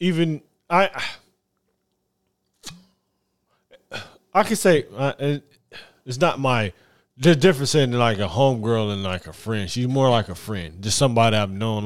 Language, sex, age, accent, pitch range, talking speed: English, male, 20-39, American, 100-135 Hz, 150 wpm